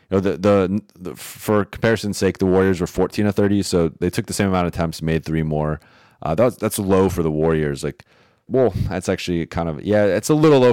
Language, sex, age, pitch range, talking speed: English, male, 30-49, 80-105 Hz, 245 wpm